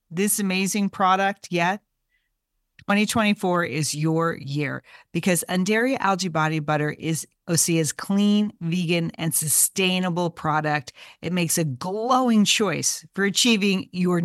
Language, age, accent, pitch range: English, 40-59, American, 165-210 Hz